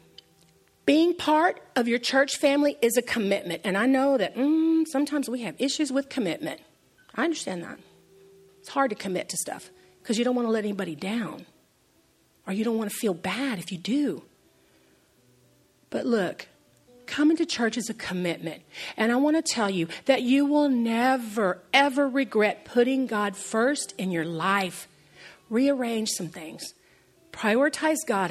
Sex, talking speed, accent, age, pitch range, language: female, 165 wpm, American, 40-59, 195-275 Hz, English